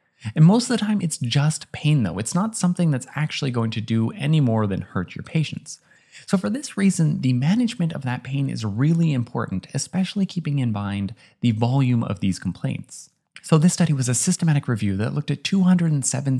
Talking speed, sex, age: 200 wpm, male, 20-39